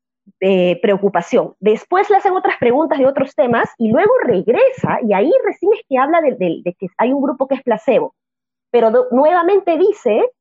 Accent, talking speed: American, 180 wpm